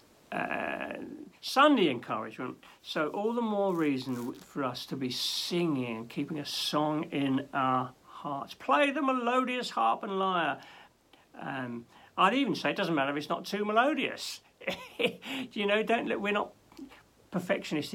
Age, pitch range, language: 60-79, 130-210 Hz, English